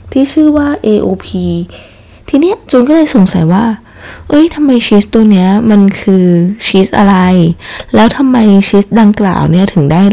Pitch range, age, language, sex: 165-225 Hz, 20-39, Thai, female